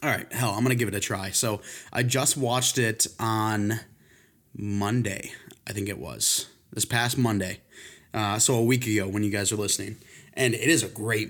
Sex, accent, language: male, American, English